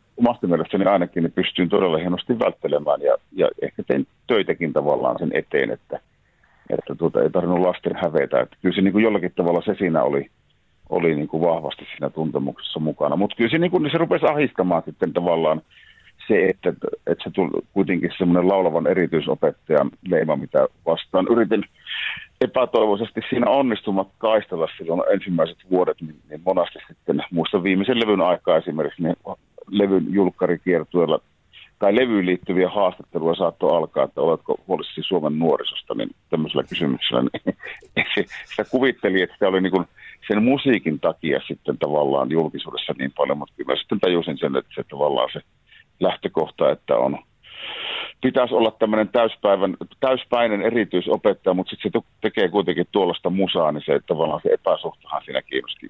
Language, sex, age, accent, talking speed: Finnish, male, 50-69, native, 145 wpm